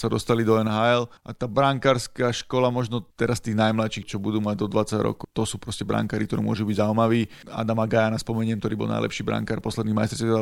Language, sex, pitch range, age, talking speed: Slovak, male, 110-125 Hz, 30-49, 200 wpm